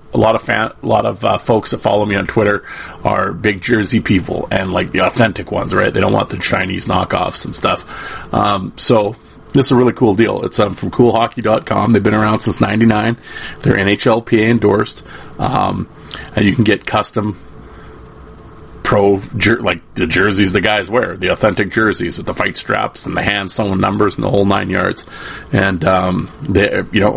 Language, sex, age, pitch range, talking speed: English, male, 30-49, 100-115 Hz, 190 wpm